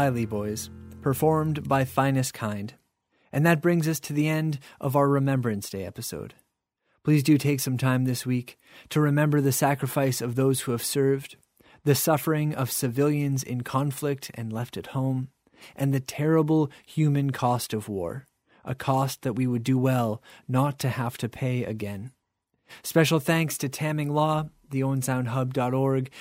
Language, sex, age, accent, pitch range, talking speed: English, male, 30-49, American, 125-150 Hz, 165 wpm